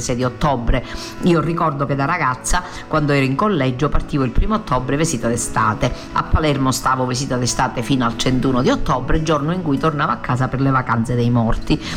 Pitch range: 125-150 Hz